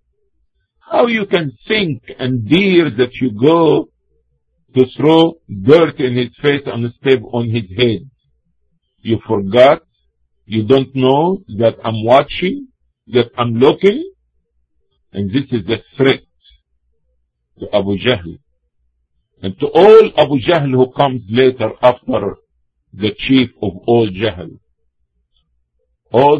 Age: 50-69